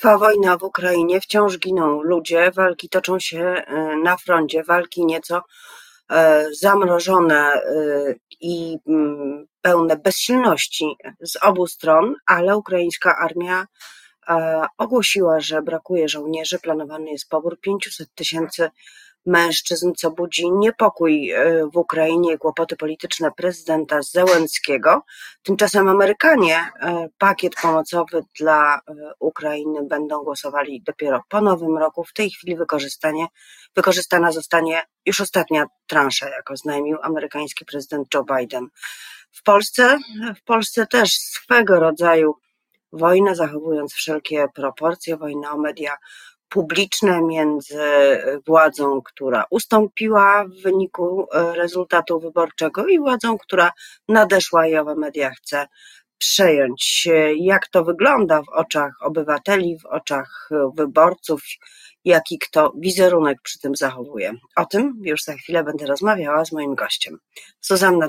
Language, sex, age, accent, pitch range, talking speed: Polish, female, 30-49, native, 150-185 Hz, 115 wpm